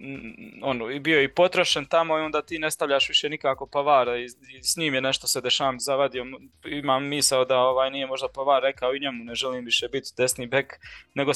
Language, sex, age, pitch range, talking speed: Croatian, male, 20-39, 130-160 Hz, 200 wpm